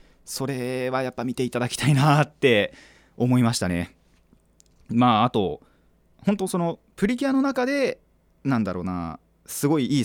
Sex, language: male, Japanese